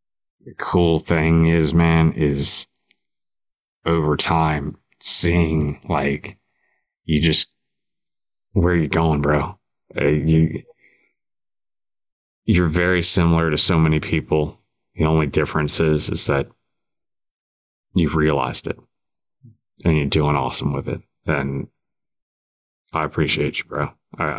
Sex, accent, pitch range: male, American, 75-100 Hz